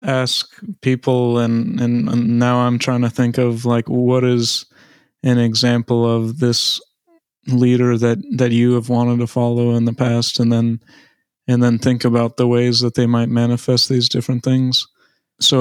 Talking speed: 170 wpm